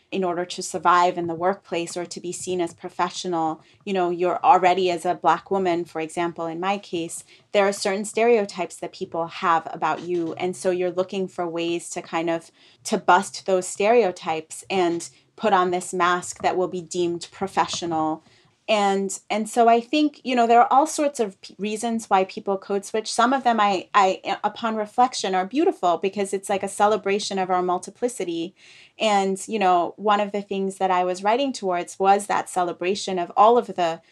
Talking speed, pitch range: 195 wpm, 175-205 Hz